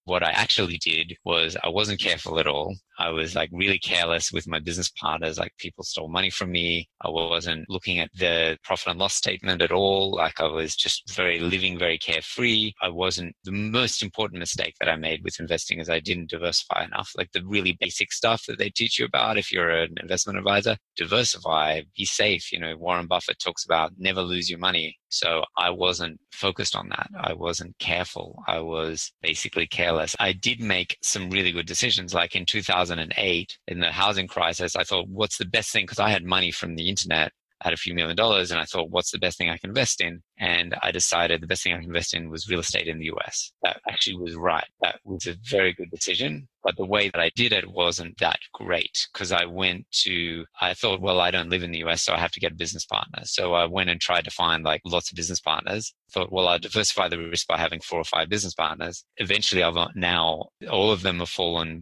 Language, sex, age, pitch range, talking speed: English, male, 20-39, 85-95 Hz, 230 wpm